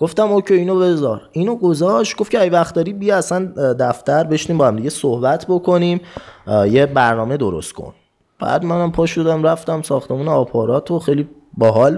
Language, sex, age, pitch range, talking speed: Persian, male, 20-39, 130-175 Hz, 170 wpm